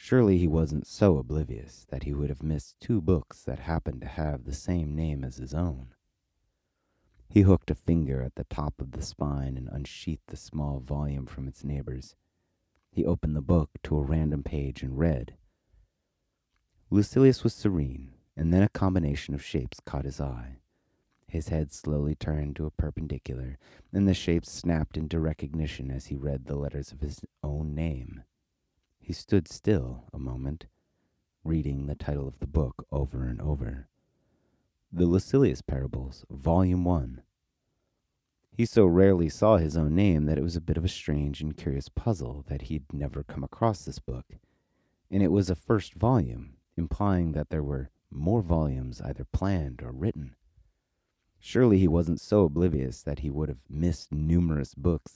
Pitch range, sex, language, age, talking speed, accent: 70-85 Hz, male, English, 30-49, 170 wpm, American